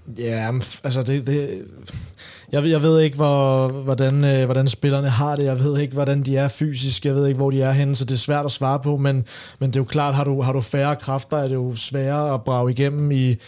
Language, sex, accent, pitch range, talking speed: Danish, male, native, 130-150 Hz, 250 wpm